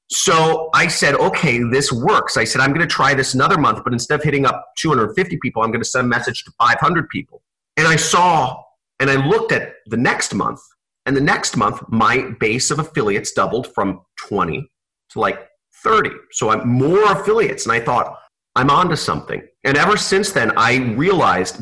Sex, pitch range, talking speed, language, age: male, 115-145 Hz, 200 wpm, English, 30-49